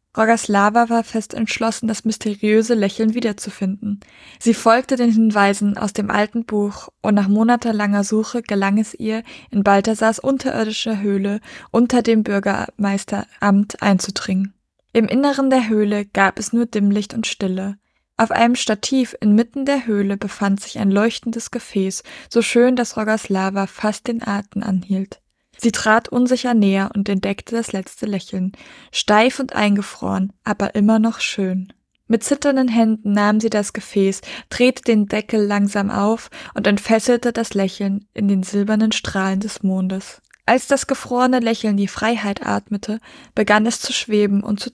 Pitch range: 200-230 Hz